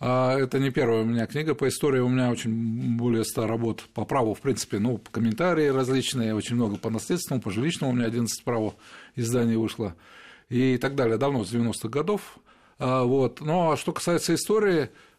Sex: male